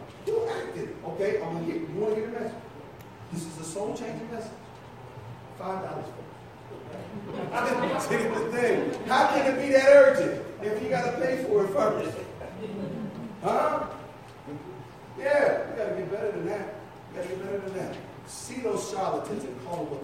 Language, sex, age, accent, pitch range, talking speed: English, male, 40-59, American, 145-190 Hz, 190 wpm